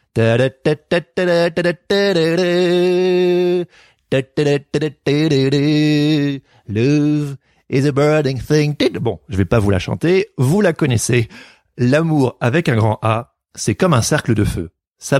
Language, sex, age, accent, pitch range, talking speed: French, male, 30-49, French, 105-140 Hz, 115 wpm